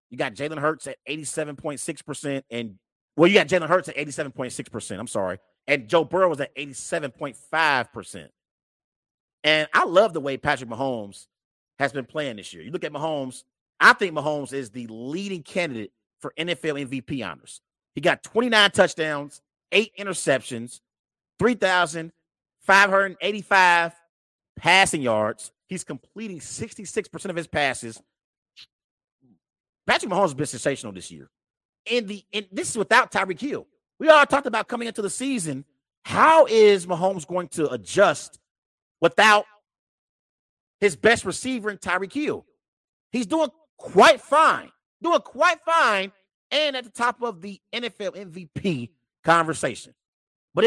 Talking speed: 140 wpm